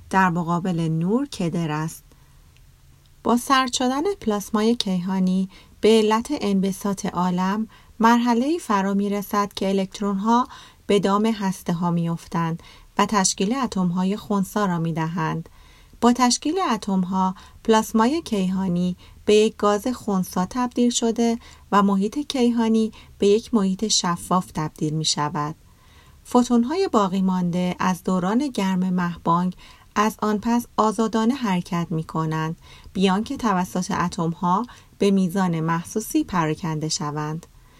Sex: female